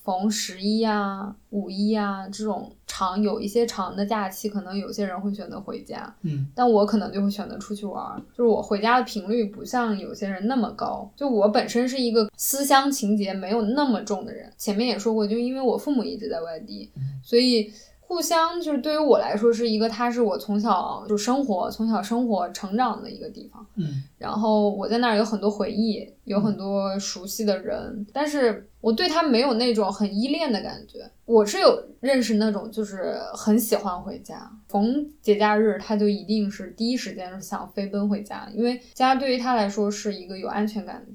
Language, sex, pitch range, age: Chinese, female, 200-235 Hz, 10-29